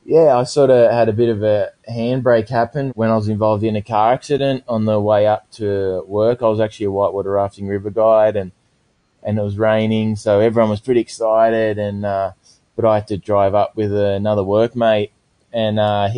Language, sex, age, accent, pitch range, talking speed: English, male, 20-39, Australian, 100-110 Hz, 210 wpm